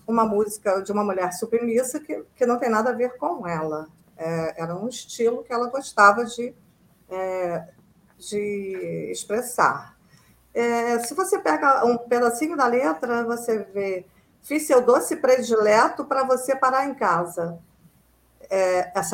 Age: 50-69